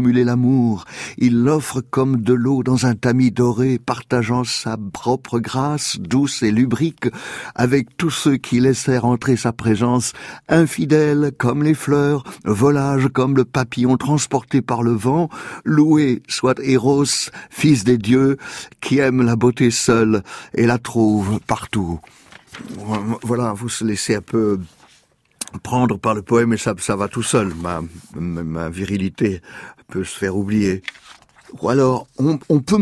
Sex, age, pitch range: male, 60-79, 110-135 Hz